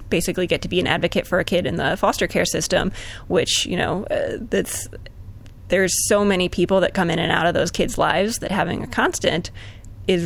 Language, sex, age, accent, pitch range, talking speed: English, female, 20-39, American, 170-200 Hz, 215 wpm